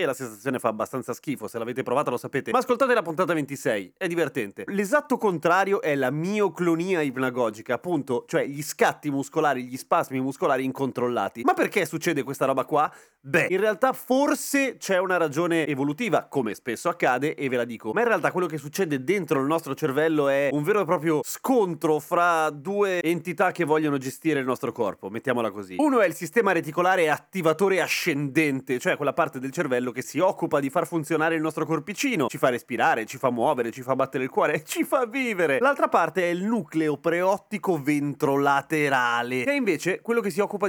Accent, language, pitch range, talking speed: native, Italian, 135-180 Hz, 190 wpm